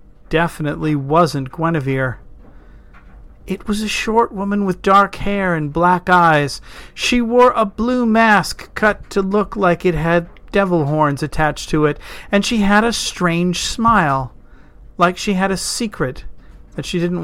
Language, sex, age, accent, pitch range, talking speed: English, male, 40-59, American, 140-200 Hz, 155 wpm